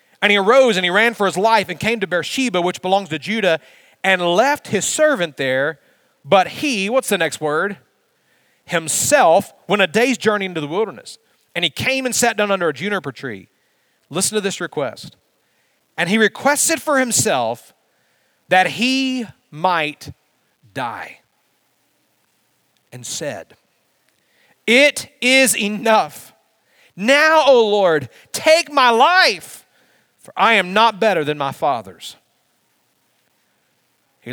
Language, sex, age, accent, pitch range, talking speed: English, male, 40-59, American, 160-225 Hz, 140 wpm